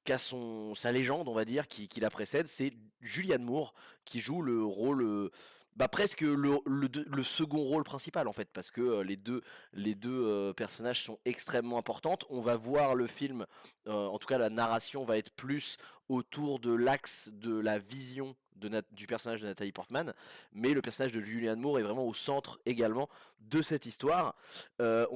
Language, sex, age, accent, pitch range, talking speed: French, male, 20-39, French, 110-145 Hz, 190 wpm